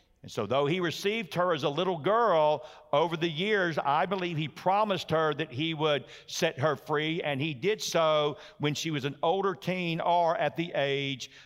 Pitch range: 145-180 Hz